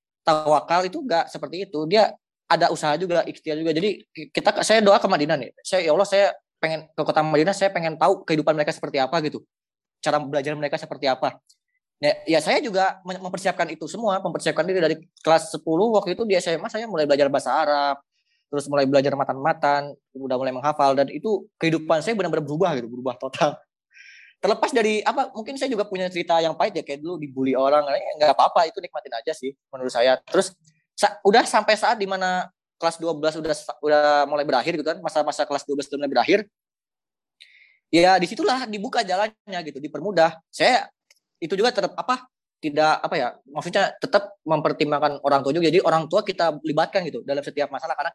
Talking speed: 190 wpm